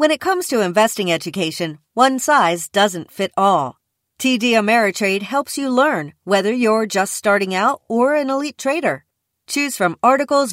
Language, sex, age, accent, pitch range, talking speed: English, female, 40-59, American, 175-260 Hz, 160 wpm